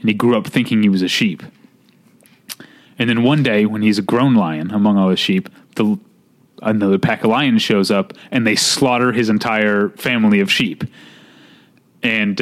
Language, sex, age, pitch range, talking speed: English, male, 30-49, 110-155 Hz, 185 wpm